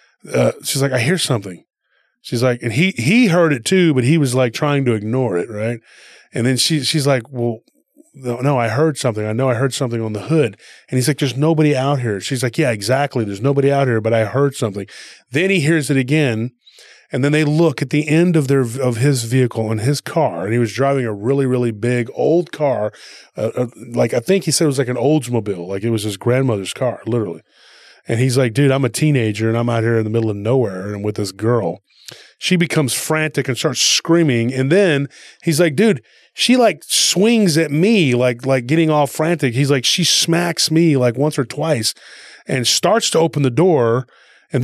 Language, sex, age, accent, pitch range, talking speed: English, male, 20-39, American, 120-155 Hz, 225 wpm